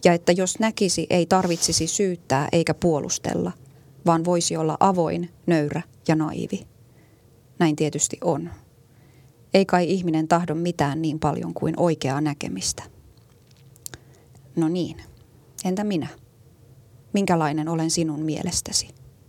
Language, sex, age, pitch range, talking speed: Finnish, female, 30-49, 125-170 Hz, 115 wpm